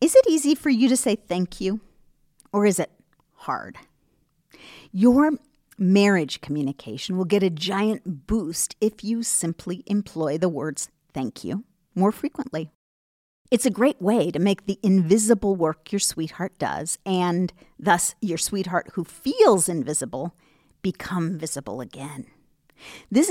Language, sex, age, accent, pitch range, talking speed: English, female, 50-69, American, 170-245 Hz, 140 wpm